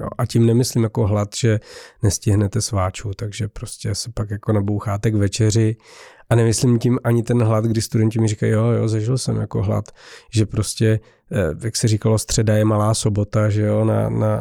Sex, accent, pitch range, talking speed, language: male, native, 110-120 Hz, 190 wpm, Czech